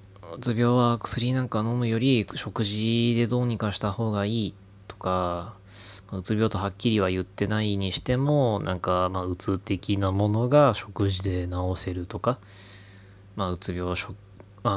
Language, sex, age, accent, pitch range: Japanese, male, 20-39, native, 95-115 Hz